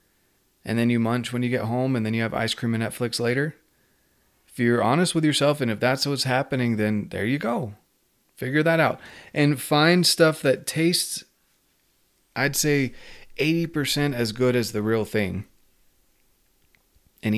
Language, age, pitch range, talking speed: English, 30-49, 105-135 Hz, 170 wpm